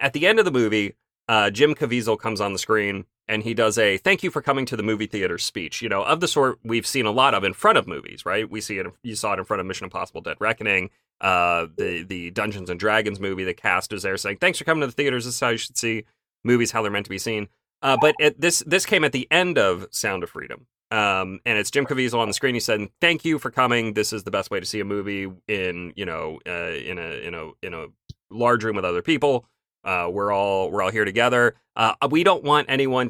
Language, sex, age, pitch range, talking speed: English, male, 30-49, 105-135 Hz, 270 wpm